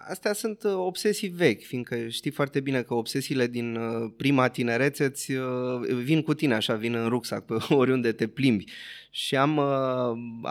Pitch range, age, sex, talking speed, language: 115-140 Hz, 20-39, male, 160 wpm, Romanian